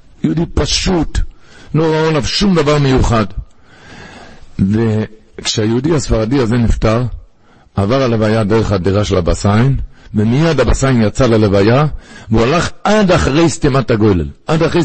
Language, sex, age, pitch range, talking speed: Hebrew, male, 60-79, 105-140 Hz, 120 wpm